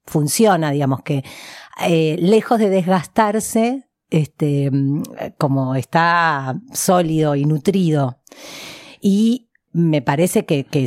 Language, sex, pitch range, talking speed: Spanish, female, 155-200 Hz, 100 wpm